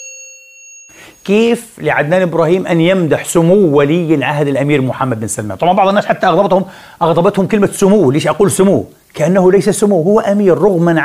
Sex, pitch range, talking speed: male, 160-230 Hz, 155 wpm